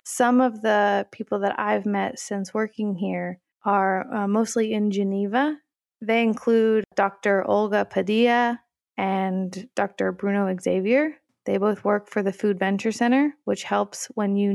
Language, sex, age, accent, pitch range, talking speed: English, female, 20-39, American, 195-230 Hz, 150 wpm